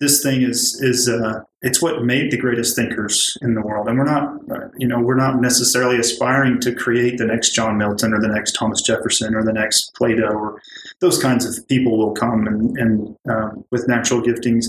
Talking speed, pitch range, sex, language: 210 wpm, 115-125 Hz, male, English